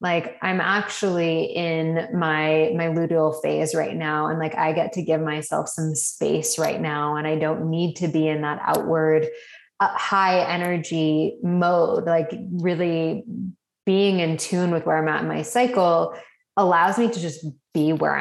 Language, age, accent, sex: English, 20-39, American, female